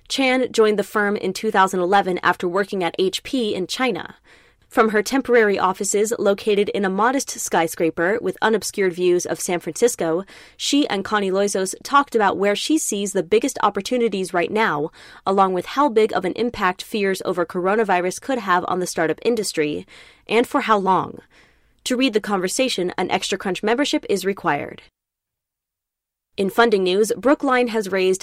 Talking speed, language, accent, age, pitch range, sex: 165 wpm, English, American, 20-39, 185-240 Hz, female